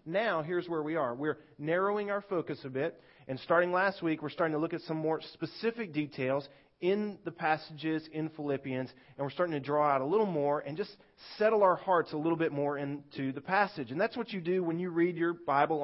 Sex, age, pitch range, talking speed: male, 30-49, 150-190 Hz, 225 wpm